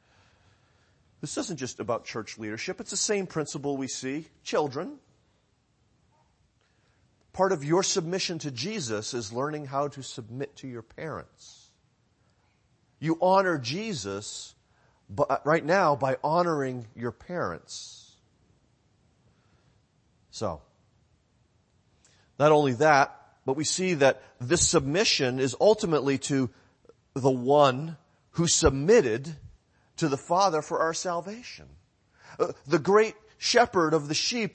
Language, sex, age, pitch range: English, male, 40-59, 115-180 Hz